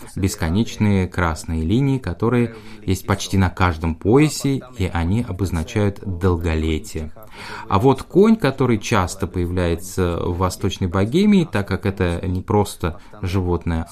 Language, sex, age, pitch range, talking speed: Russian, male, 20-39, 90-115 Hz, 120 wpm